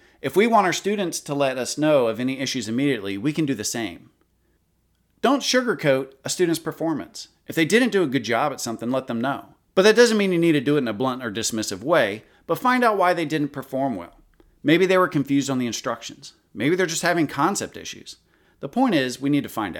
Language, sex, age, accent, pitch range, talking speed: English, male, 40-59, American, 130-185 Hz, 235 wpm